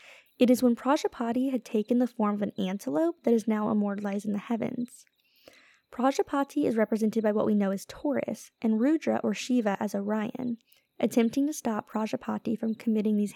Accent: American